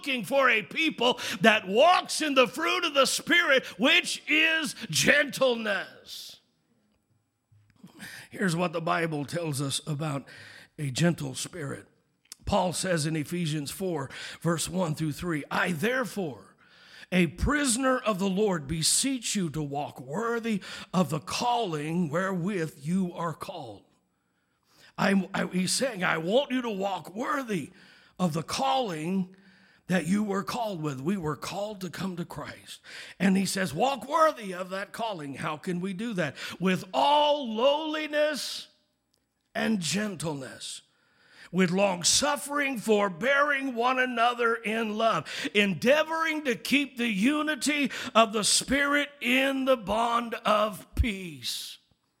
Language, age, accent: English, 50-69, American